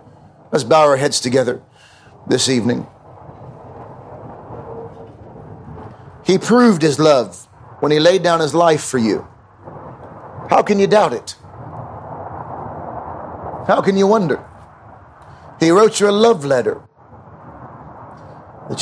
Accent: American